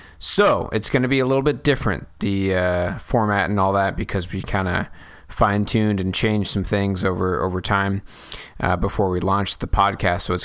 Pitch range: 100-125 Hz